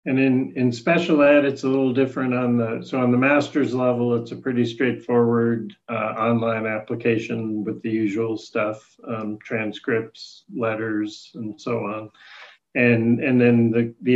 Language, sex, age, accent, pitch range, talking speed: English, male, 50-69, American, 110-125 Hz, 160 wpm